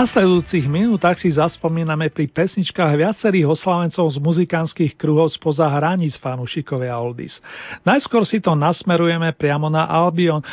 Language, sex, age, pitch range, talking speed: Slovak, male, 40-59, 155-190 Hz, 135 wpm